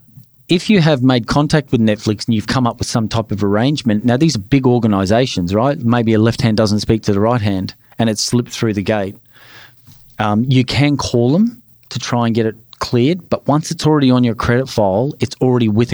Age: 40-59